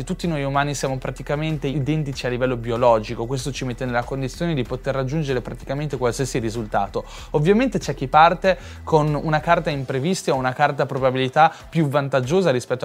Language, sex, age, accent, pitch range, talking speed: Italian, male, 20-39, native, 130-165 Hz, 165 wpm